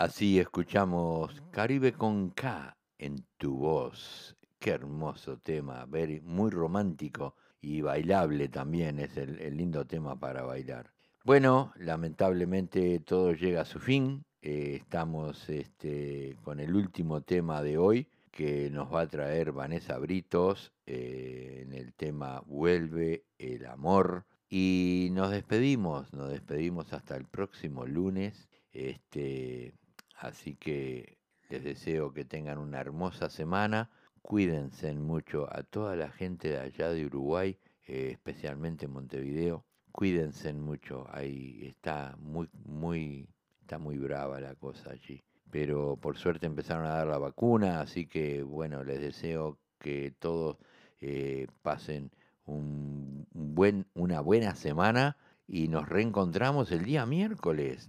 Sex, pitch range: male, 70-90 Hz